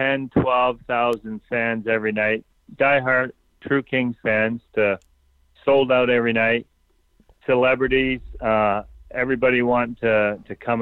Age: 40-59